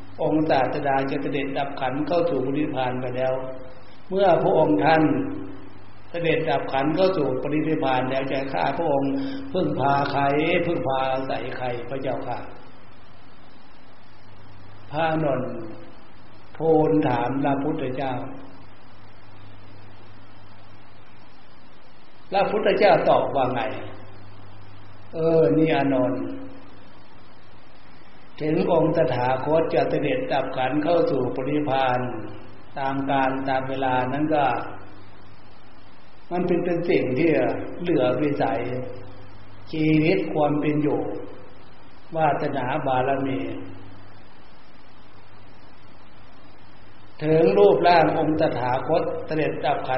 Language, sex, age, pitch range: Thai, male, 60-79, 105-150 Hz